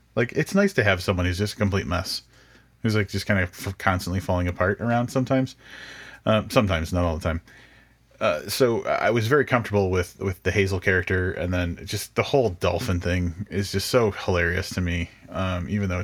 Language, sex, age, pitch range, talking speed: English, male, 30-49, 90-110 Hz, 205 wpm